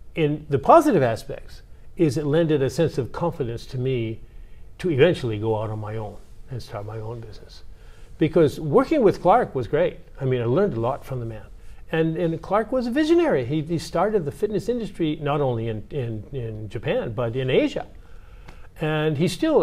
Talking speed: 195 wpm